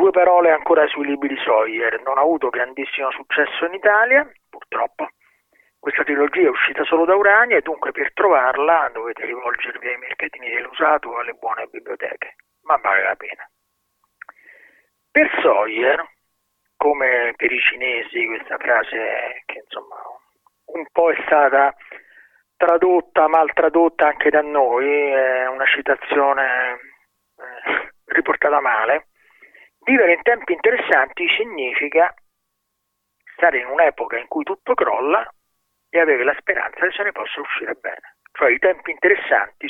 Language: Italian